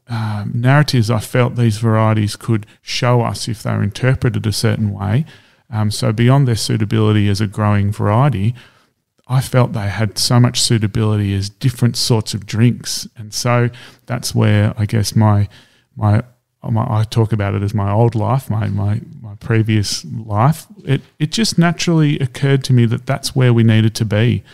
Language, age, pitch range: English, 30-49, 110-130 Hz